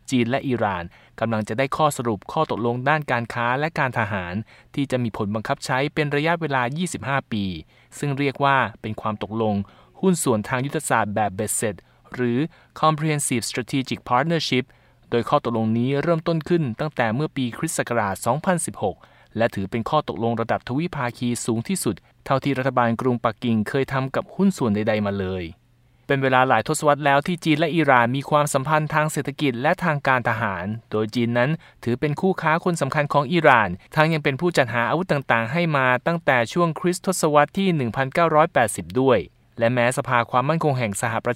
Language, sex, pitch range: Thai, male, 115-155 Hz